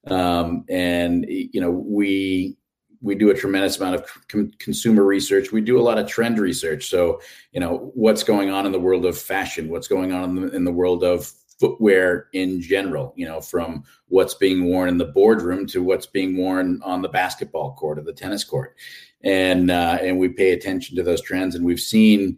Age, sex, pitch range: 40-59, male, 85-100 Hz